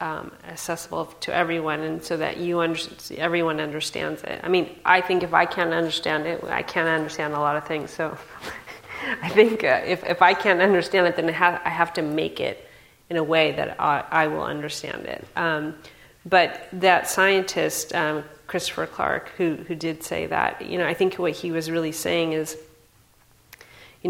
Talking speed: 195 wpm